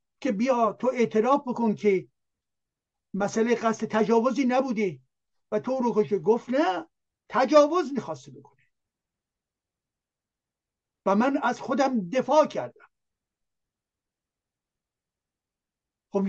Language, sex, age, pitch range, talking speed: Persian, male, 60-79, 195-260 Hz, 95 wpm